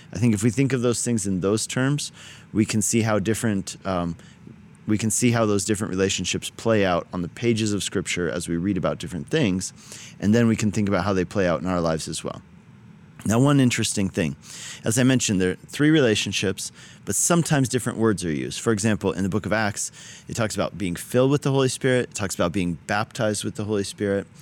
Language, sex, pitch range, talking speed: English, male, 95-125 Hz, 230 wpm